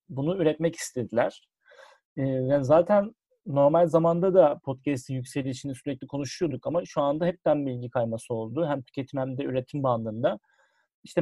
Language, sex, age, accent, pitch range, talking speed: Turkish, male, 40-59, native, 130-160 Hz, 140 wpm